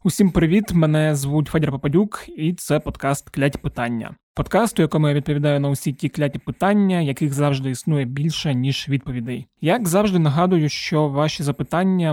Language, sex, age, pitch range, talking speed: Ukrainian, male, 20-39, 145-165 Hz, 165 wpm